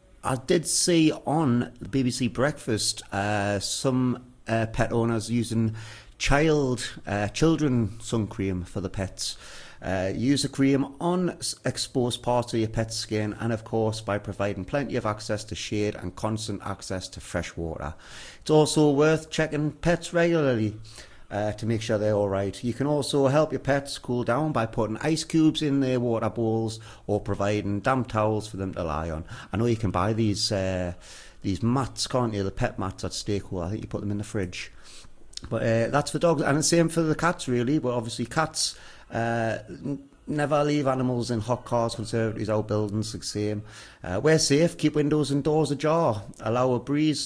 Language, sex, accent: English, male, British